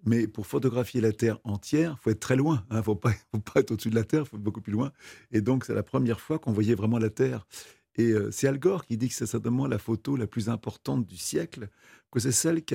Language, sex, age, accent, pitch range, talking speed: French, male, 40-59, French, 105-120 Hz, 280 wpm